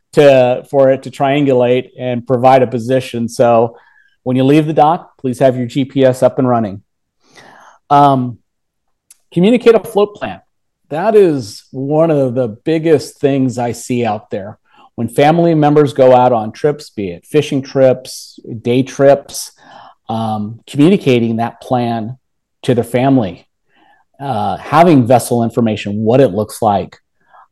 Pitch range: 120-145 Hz